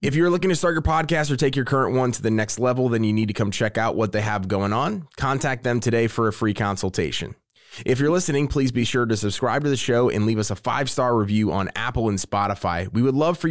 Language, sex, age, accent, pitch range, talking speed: English, male, 20-39, American, 105-135 Hz, 265 wpm